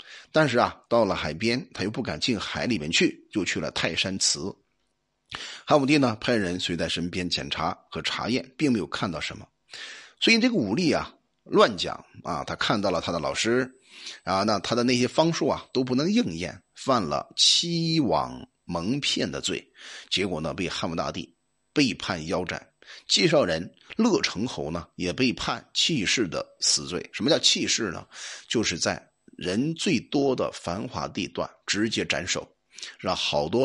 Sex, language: male, Chinese